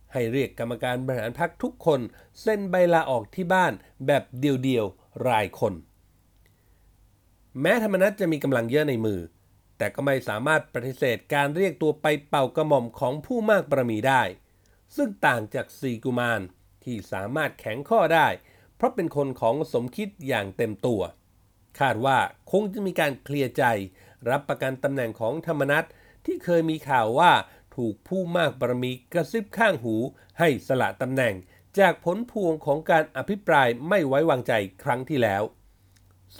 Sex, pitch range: male, 110-165 Hz